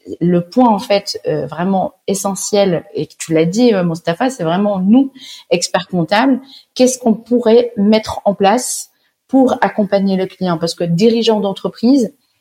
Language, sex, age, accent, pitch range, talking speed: French, female, 30-49, French, 175-250 Hz, 155 wpm